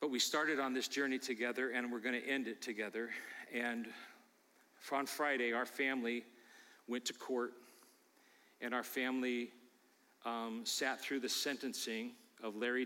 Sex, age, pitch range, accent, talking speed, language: male, 40-59, 115-135 Hz, American, 150 wpm, English